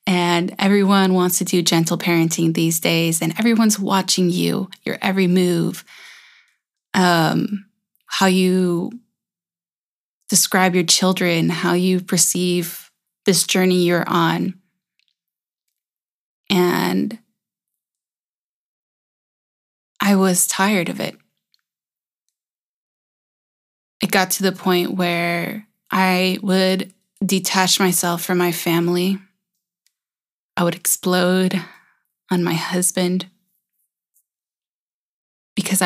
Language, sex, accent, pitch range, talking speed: English, female, American, 175-195 Hz, 90 wpm